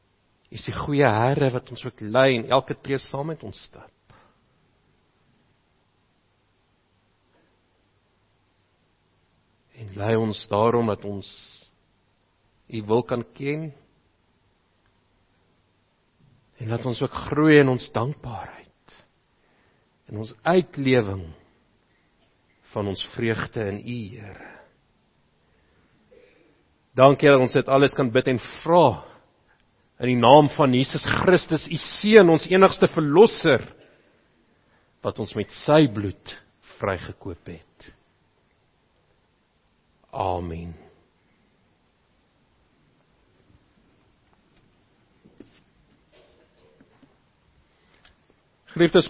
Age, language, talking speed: 50-69, English, 85 wpm